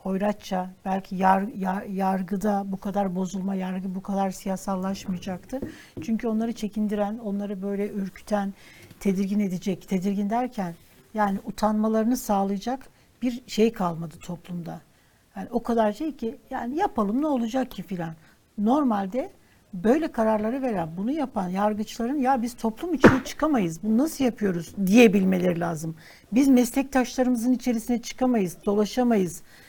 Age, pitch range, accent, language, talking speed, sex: 60-79, 195-245 Hz, native, Turkish, 125 wpm, female